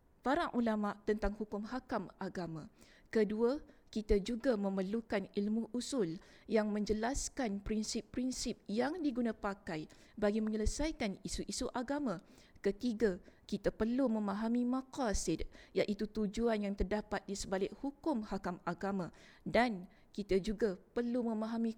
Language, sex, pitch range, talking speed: English, female, 200-245 Hz, 110 wpm